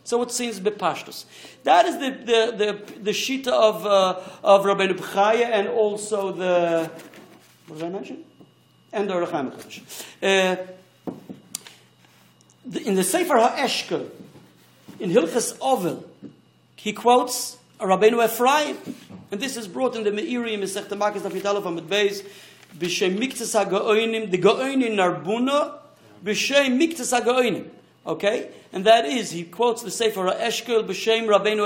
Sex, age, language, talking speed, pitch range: male, 50-69, English, 135 wpm, 185-225 Hz